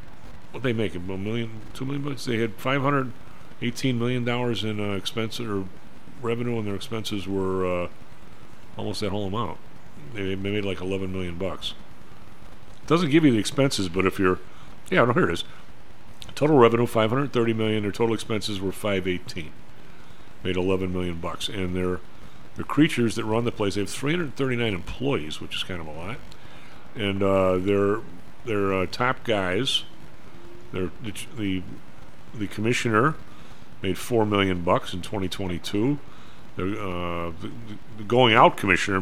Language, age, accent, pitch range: English, 50-69, American, 95-120 Hz